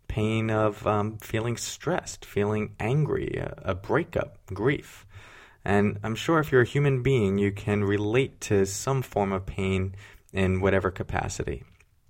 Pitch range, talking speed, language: 95-110 Hz, 145 wpm, English